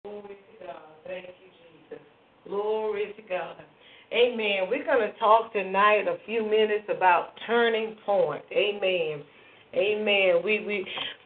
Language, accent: English, American